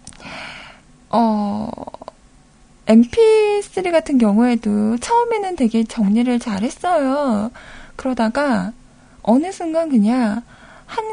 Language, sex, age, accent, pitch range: Korean, female, 20-39, native, 215-300 Hz